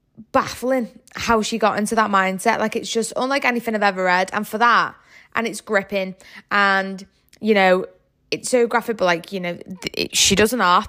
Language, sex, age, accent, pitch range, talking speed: English, female, 20-39, British, 195-250 Hz, 200 wpm